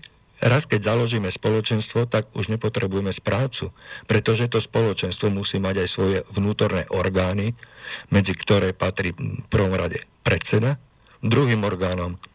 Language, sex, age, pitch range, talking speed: Slovak, male, 50-69, 95-115 Hz, 125 wpm